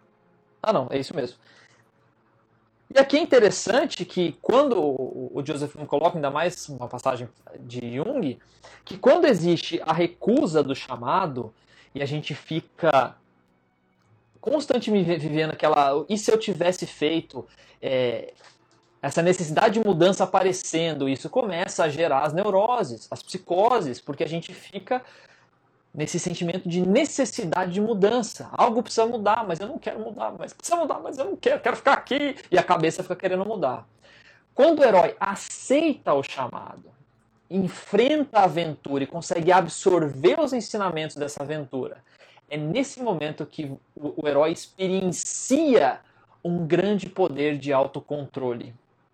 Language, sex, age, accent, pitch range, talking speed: Portuguese, male, 20-39, Brazilian, 145-205 Hz, 140 wpm